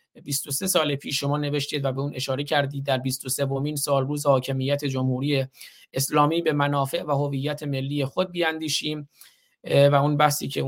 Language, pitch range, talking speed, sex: Persian, 140-155 Hz, 165 wpm, male